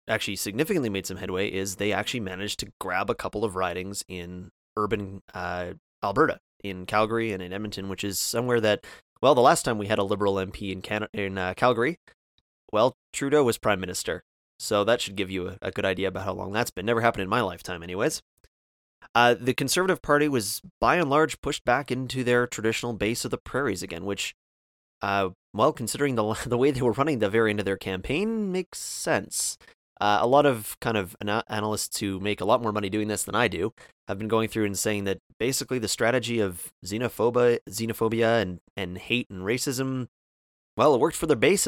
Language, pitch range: English, 95-120 Hz